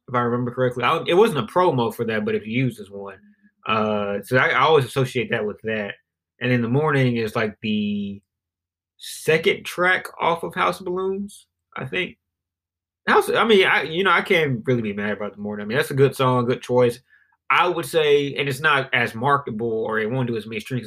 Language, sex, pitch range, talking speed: English, male, 105-130 Hz, 225 wpm